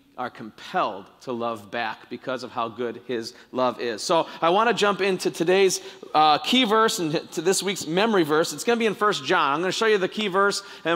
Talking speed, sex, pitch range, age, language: 240 wpm, male, 165-205 Hz, 40-59, English